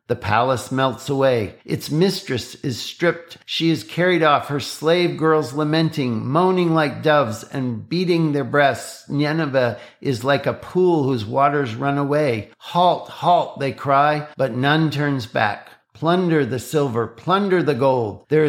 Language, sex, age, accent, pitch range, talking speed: English, male, 50-69, American, 125-160 Hz, 155 wpm